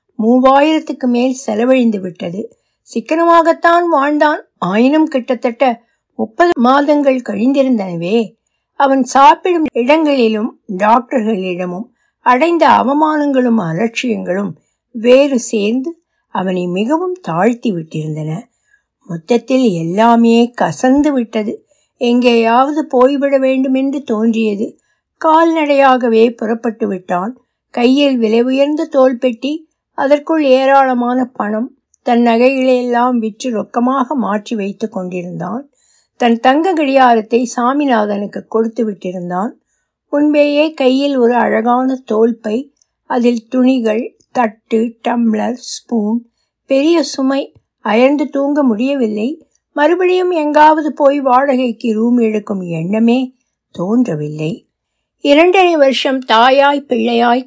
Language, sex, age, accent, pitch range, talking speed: Tamil, female, 60-79, native, 225-280 Hz, 80 wpm